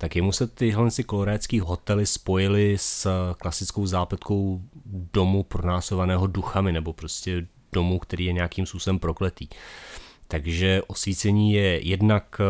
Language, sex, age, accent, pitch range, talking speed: Czech, male, 30-49, native, 85-95 Hz, 120 wpm